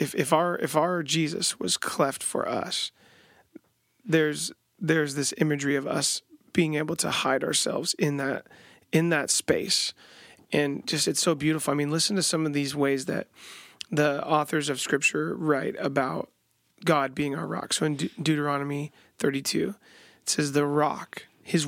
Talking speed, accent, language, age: 165 wpm, American, English, 30-49